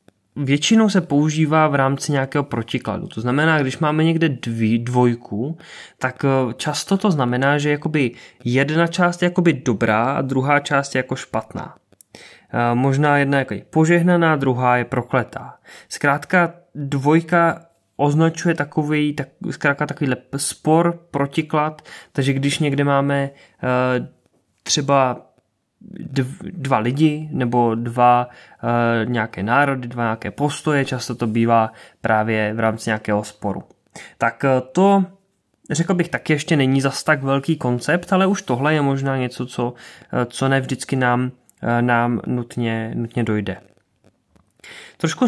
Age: 20-39